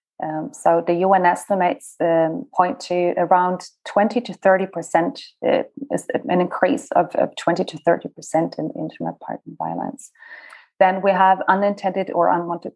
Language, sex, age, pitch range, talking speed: English, female, 20-39, 175-210 Hz, 145 wpm